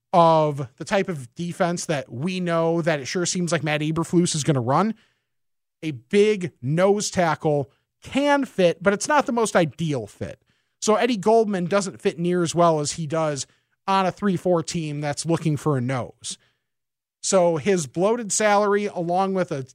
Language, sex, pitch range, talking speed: English, male, 150-195 Hz, 180 wpm